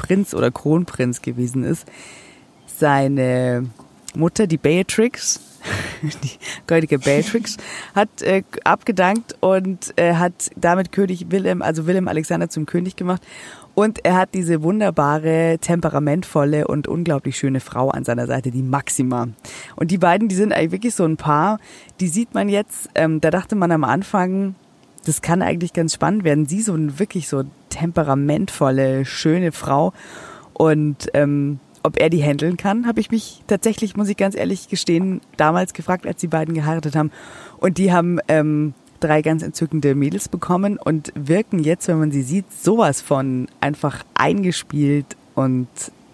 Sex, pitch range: female, 145-185 Hz